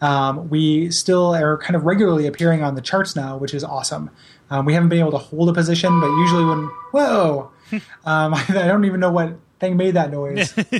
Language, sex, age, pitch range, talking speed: English, male, 20-39, 145-170 Hz, 210 wpm